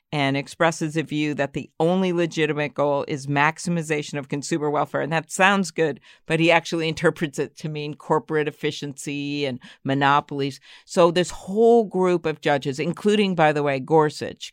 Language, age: English, 50-69